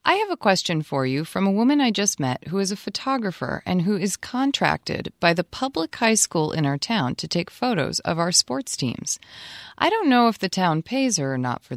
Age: 30-49